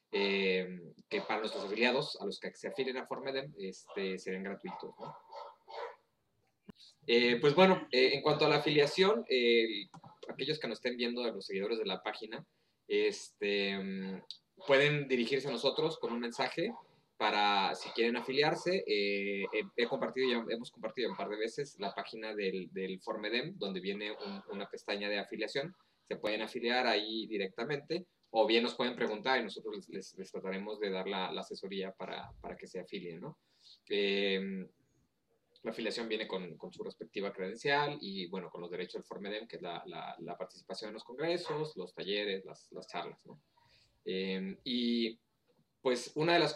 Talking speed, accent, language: 175 wpm, Mexican, Spanish